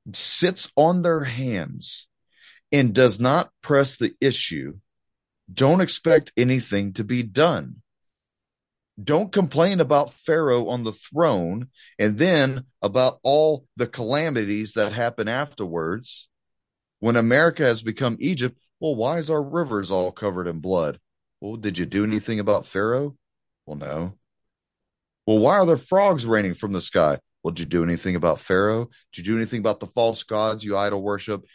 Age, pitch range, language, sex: 40-59, 100-135 Hz, English, male